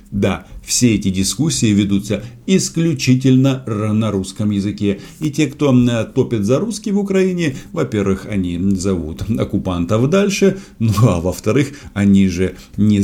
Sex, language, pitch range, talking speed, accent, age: male, Russian, 95-135 Hz, 130 wpm, native, 50-69